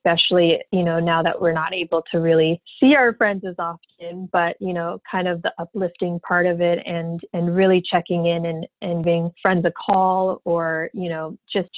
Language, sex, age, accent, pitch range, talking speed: English, female, 30-49, American, 170-195 Hz, 205 wpm